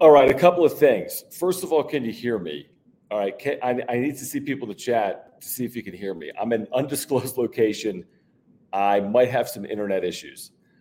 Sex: male